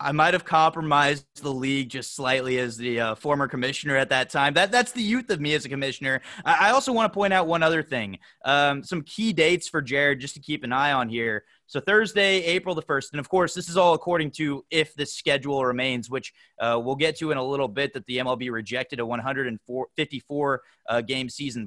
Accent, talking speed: American, 225 wpm